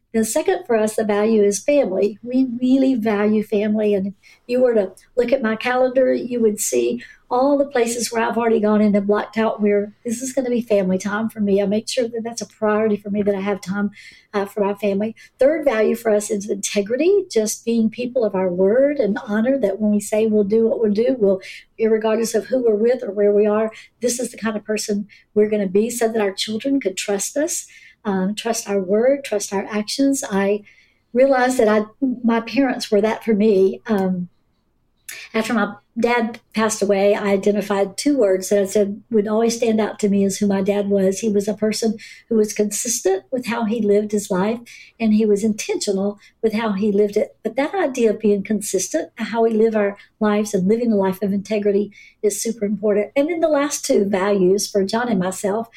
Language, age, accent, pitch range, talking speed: English, 60-79, American, 205-235 Hz, 220 wpm